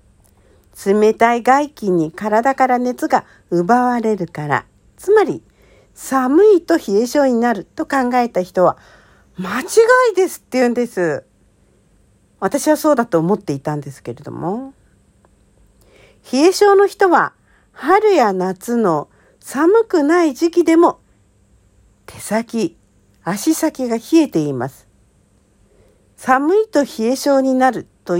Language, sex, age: Japanese, female, 50-69